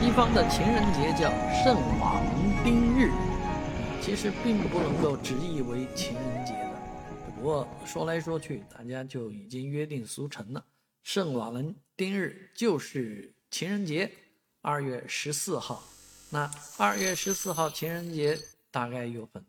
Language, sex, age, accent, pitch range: Chinese, male, 50-69, native, 120-170 Hz